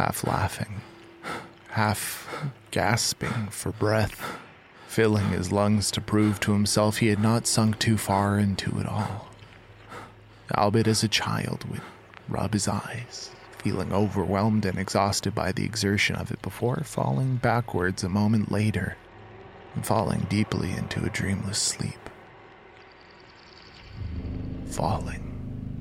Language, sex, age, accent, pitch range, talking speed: English, male, 20-39, American, 95-110 Hz, 125 wpm